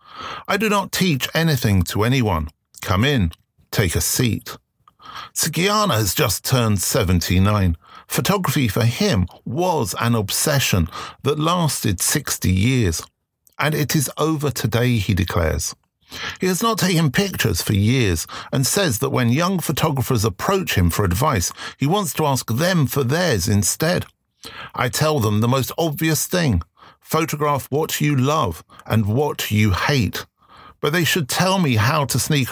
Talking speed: 150 wpm